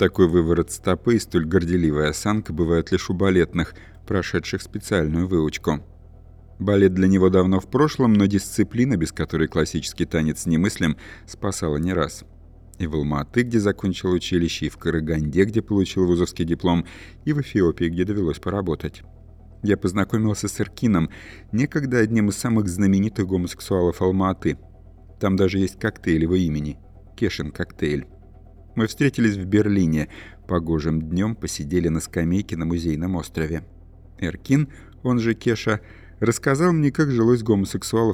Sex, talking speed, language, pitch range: male, 140 wpm, Russian, 80-100 Hz